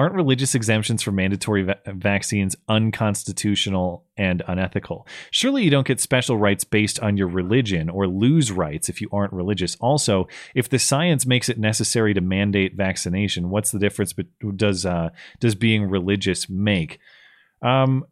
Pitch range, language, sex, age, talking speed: 100-130 Hz, English, male, 30-49, 155 wpm